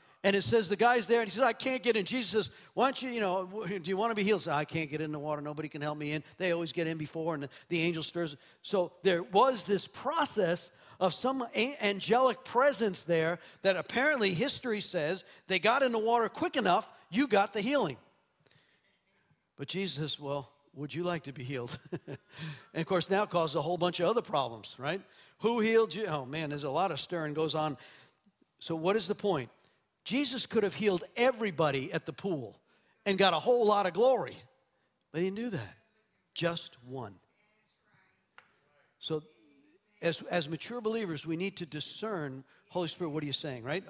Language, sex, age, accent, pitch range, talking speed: English, male, 50-69, American, 155-220 Hz, 205 wpm